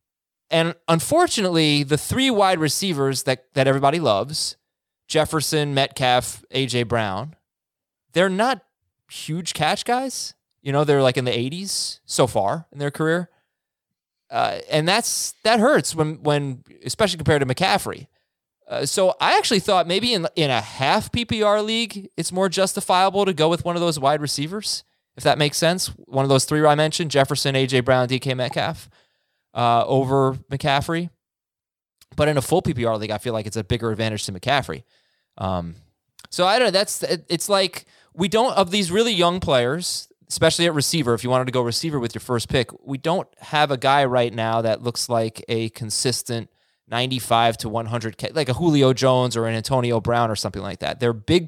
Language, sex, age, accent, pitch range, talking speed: English, male, 20-39, American, 120-170 Hz, 180 wpm